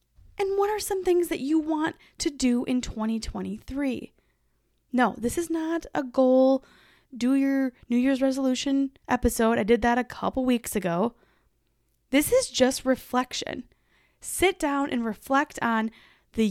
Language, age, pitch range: English, 10-29, 225-285 Hz